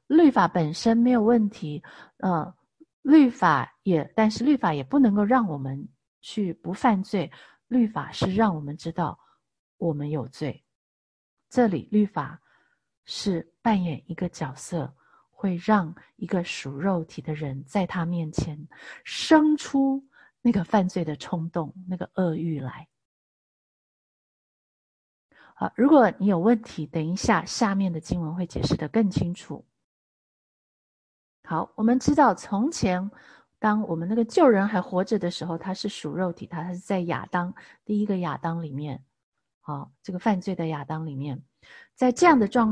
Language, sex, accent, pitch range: Chinese, female, native, 165-230 Hz